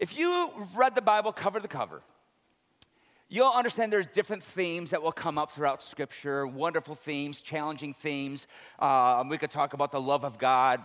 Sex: male